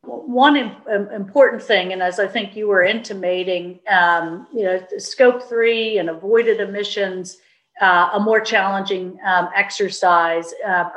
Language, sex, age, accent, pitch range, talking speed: English, female, 50-69, American, 180-215 Hz, 135 wpm